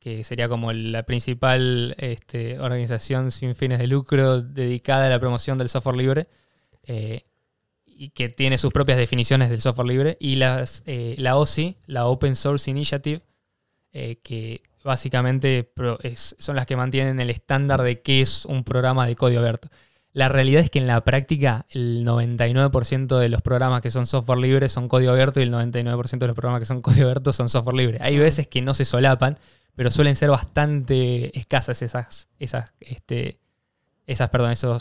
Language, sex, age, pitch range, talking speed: Spanish, male, 20-39, 125-140 Hz, 165 wpm